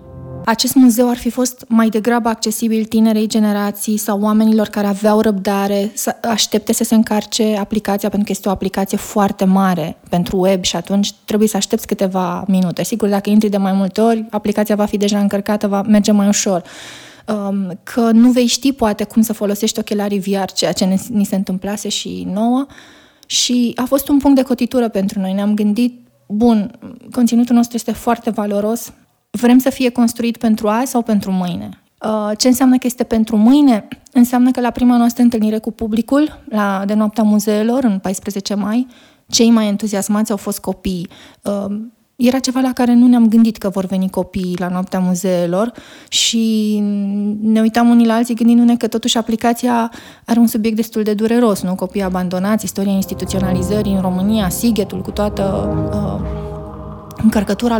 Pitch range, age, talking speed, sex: 200-235 Hz, 20-39, 170 wpm, female